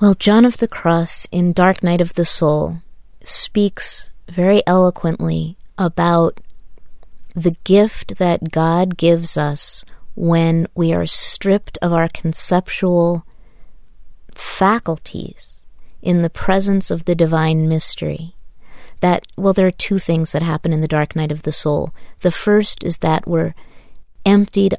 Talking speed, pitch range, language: 140 wpm, 155-180 Hz, English